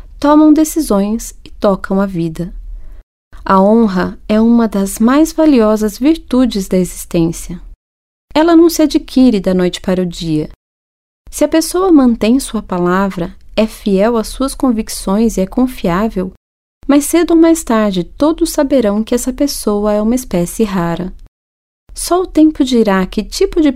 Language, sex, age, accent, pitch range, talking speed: Portuguese, female, 30-49, Brazilian, 175-255 Hz, 150 wpm